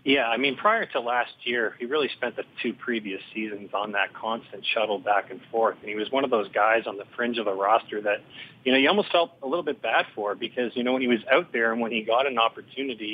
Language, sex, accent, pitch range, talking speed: English, male, American, 110-125 Hz, 270 wpm